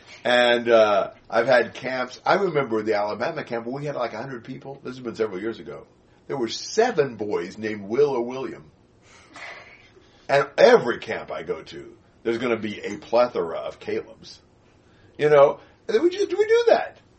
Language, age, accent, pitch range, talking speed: English, 50-69, American, 110-150 Hz, 180 wpm